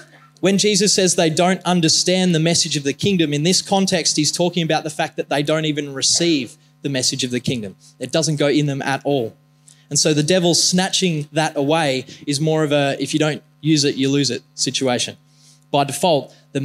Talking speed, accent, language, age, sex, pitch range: 215 wpm, Australian, English, 20-39, male, 145-175 Hz